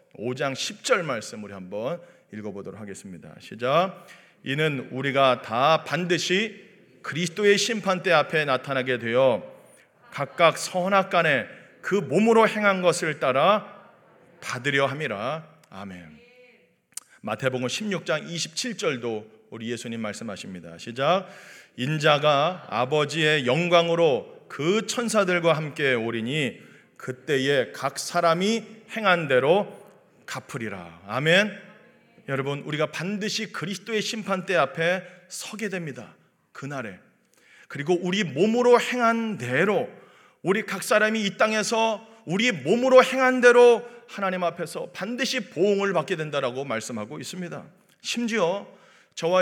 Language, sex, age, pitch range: Korean, male, 40-59, 140-215 Hz